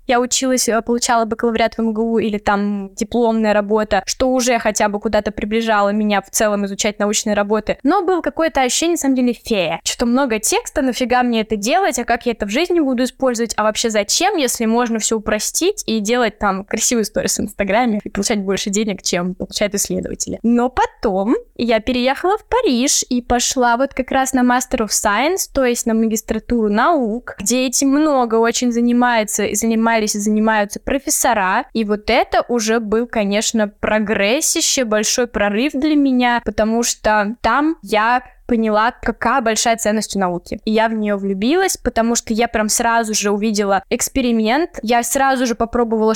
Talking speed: 175 wpm